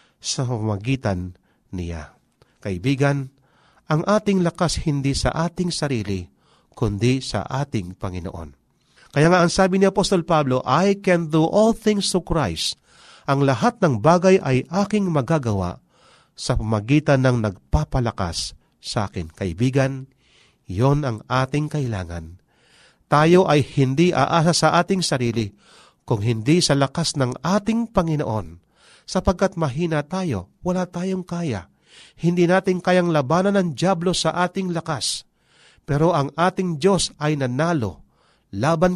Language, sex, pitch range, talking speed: Filipino, male, 120-175 Hz, 130 wpm